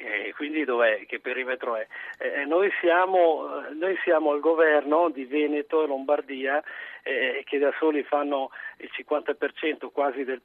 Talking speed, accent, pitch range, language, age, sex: 150 wpm, native, 140-185 Hz, Italian, 40-59, male